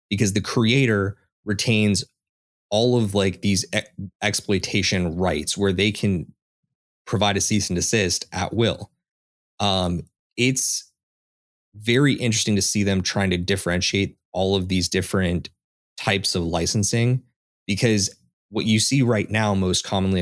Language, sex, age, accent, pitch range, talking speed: English, male, 20-39, American, 90-110 Hz, 135 wpm